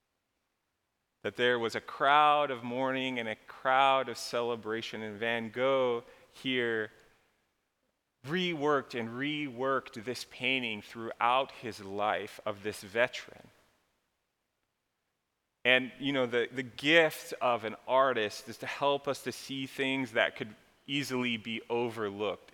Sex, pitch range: male, 110-135 Hz